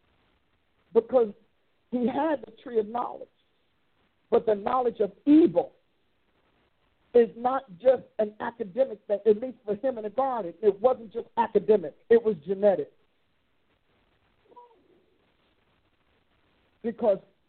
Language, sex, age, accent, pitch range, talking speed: English, male, 50-69, American, 215-255 Hz, 115 wpm